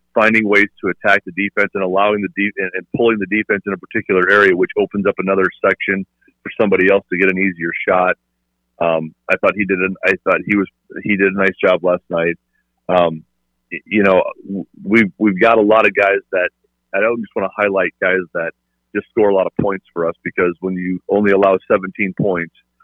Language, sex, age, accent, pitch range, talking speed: English, male, 40-59, American, 85-100 Hz, 225 wpm